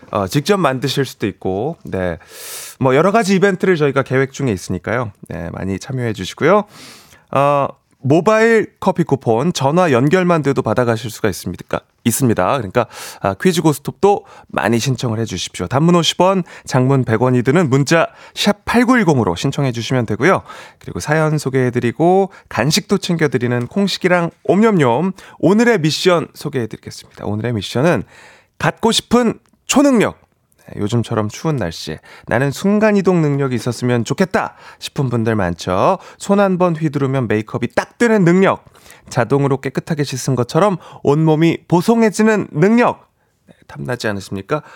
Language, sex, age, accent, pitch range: Korean, male, 30-49, native, 115-180 Hz